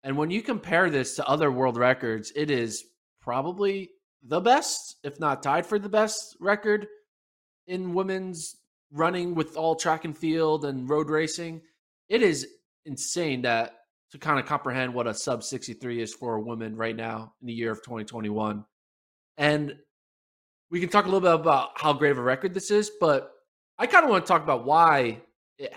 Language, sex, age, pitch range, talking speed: English, male, 20-39, 120-160 Hz, 185 wpm